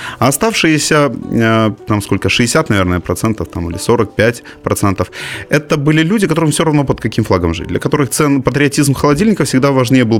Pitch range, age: 105-150 Hz, 30-49